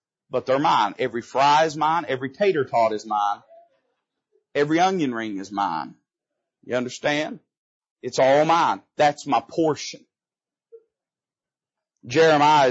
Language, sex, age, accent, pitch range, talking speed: English, male, 40-59, American, 125-190 Hz, 125 wpm